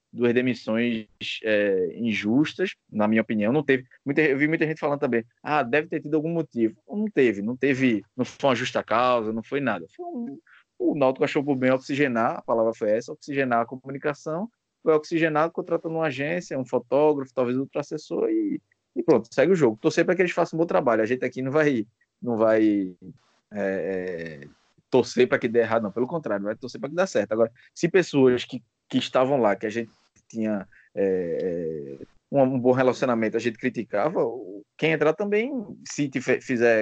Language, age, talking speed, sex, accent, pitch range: Portuguese, 20-39, 195 wpm, male, Brazilian, 110-155 Hz